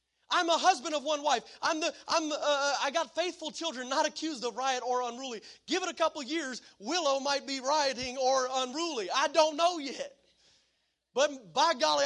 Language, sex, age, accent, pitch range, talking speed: English, male, 30-49, American, 215-280 Hz, 200 wpm